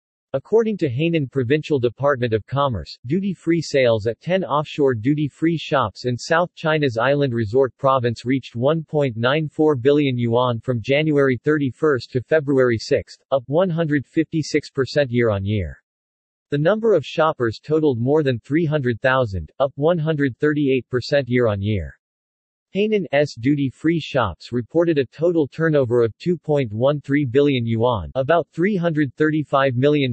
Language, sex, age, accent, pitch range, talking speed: English, male, 40-59, American, 120-155 Hz, 115 wpm